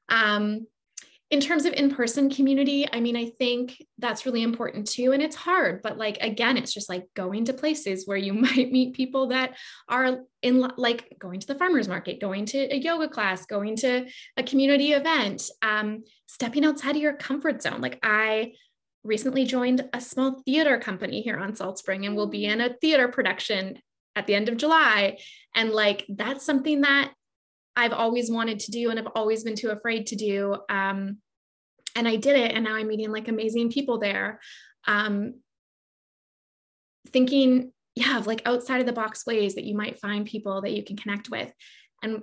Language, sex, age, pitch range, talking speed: English, female, 20-39, 205-260 Hz, 190 wpm